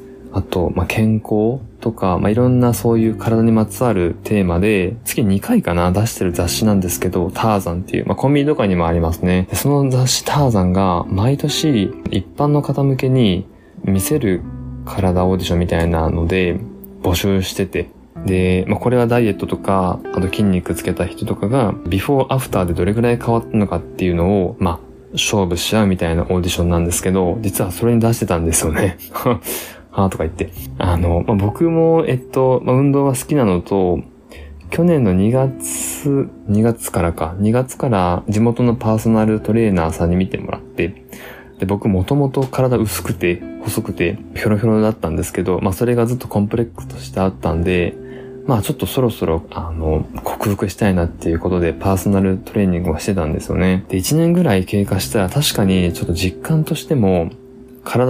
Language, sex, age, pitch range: Japanese, male, 20-39, 90-120 Hz